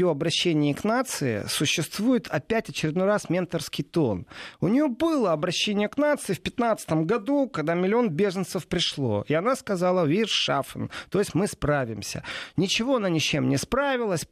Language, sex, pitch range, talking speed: Russian, male, 140-195 Hz, 150 wpm